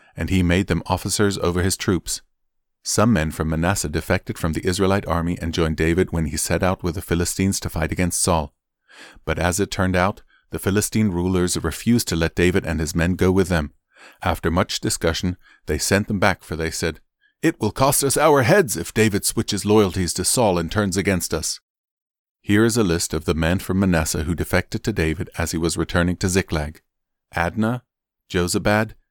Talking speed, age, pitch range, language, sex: 200 wpm, 40-59, 85-105 Hz, English, male